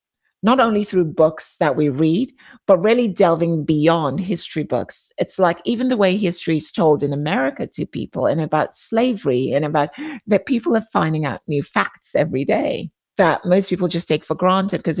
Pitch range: 155-195 Hz